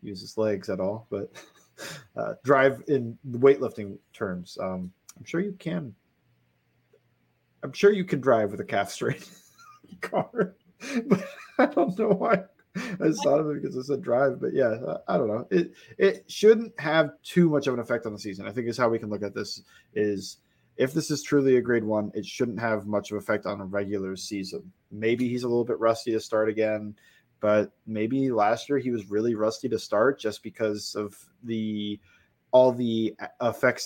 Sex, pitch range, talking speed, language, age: male, 105-135 Hz, 195 wpm, English, 20-39